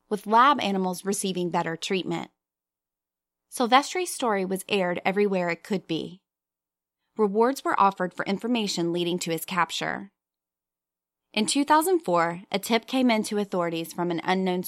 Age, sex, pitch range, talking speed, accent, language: 20-39, female, 170-230 Hz, 140 wpm, American, English